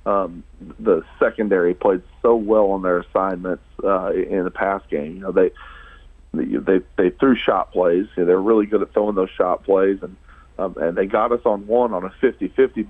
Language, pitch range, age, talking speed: English, 90-110 Hz, 40-59, 210 wpm